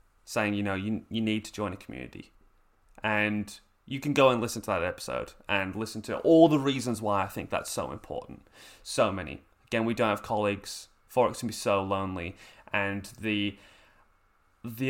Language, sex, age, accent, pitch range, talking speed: English, male, 20-39, British, 100-135 Hz, 185 wpm